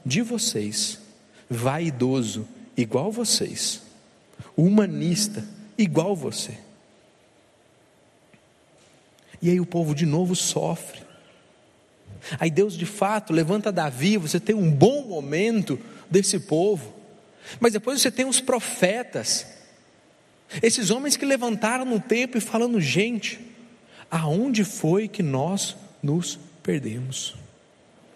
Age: 50-69